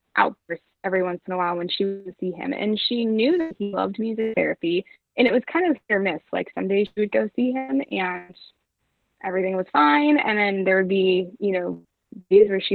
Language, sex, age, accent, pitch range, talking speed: English, female, 20-39, American, 190-275 Hz, 225 wpm